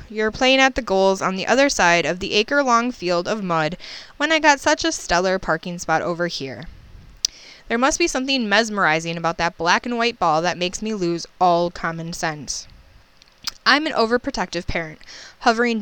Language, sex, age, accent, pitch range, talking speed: English, female, 20-39, American, 170-225 Hz, 180 wpm